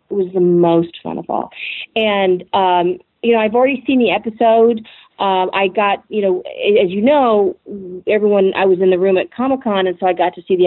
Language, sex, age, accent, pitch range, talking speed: English, female, 40-59, American, 175-210 Hz, 220 wpm